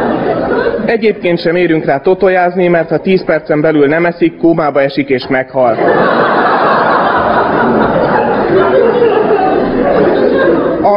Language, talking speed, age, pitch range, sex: Hungarian, 95 wpm, 30-49, 150-185 Hz, male